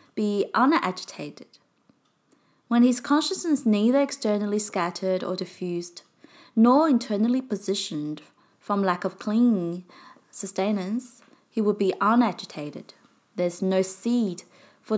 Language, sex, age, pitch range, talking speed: English, female, 20-39, 180-240 Hz, 105 wpm